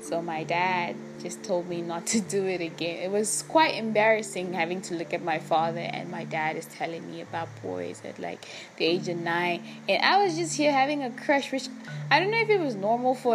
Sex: female